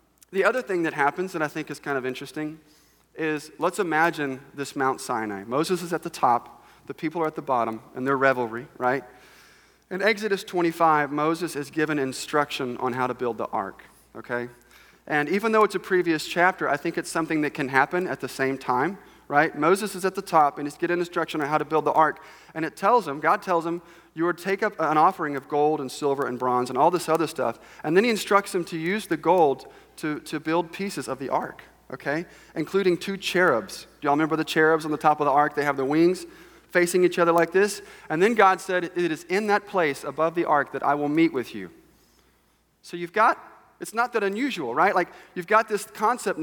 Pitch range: 145-185 Hz